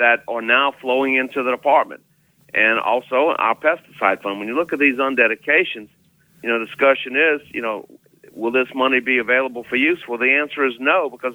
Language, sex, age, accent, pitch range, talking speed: English, male, 50-69, American, 115-140 Hz, 200 wpm